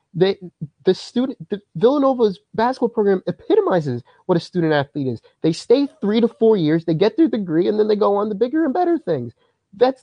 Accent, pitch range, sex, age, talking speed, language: American, 160-265 Hz, male, 30-49, 205 wpm, English